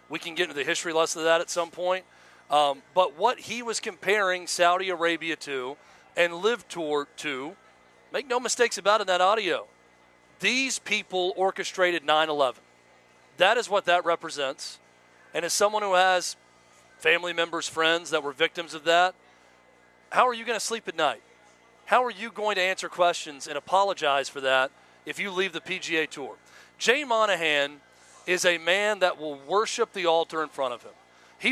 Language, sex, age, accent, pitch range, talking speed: English, male, 40-59, American, 155-205 Hz, 180 wpm